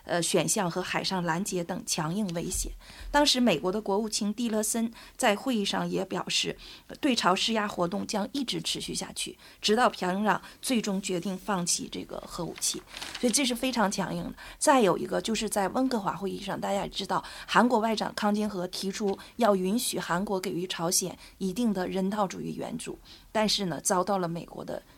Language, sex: Korean, female